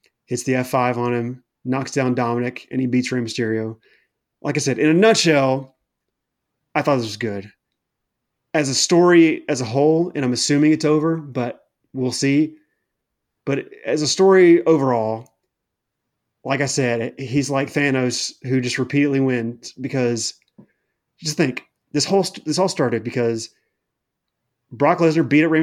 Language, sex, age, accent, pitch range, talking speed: English, male, 30-49, American, 125-155 Hz, 155 wpm